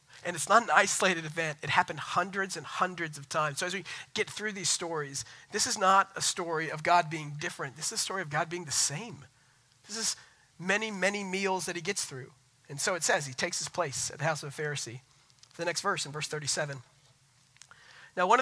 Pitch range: 145-180 Hz